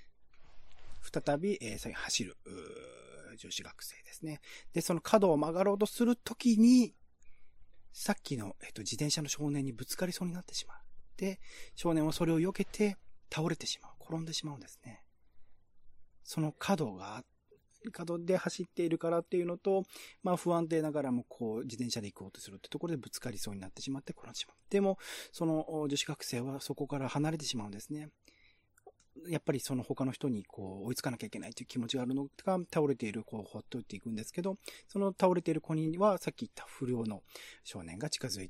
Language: Japanese